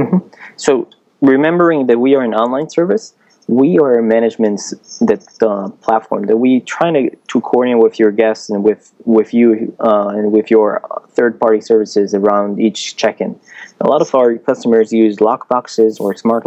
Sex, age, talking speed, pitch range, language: male, 20-39, 170 wpm, 105-120 Hz, English